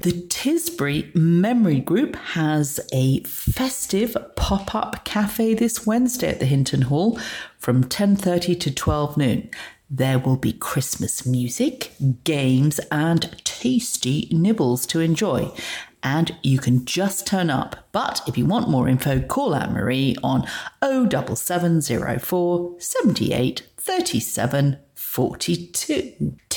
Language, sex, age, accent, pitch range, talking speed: English, female, 40-59, British, 135-185 Hz, 115 wpm